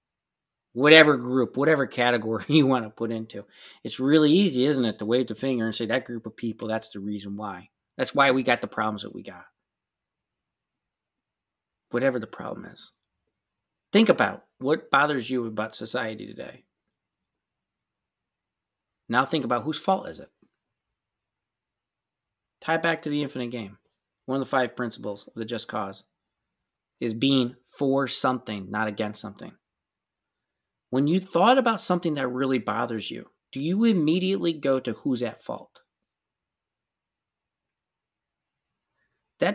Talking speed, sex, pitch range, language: 145 wpm, male, 110-150 Hz, English